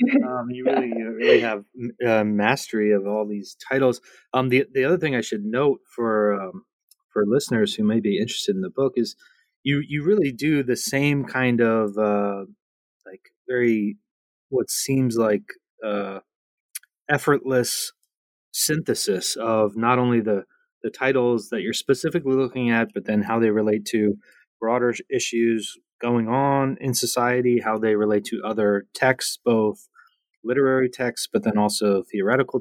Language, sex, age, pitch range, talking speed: English, male, 30-49, 105-135 Hz, 155 wpm